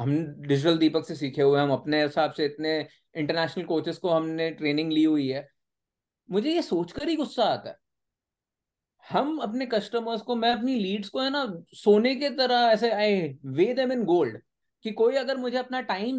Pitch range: 165-245 Hz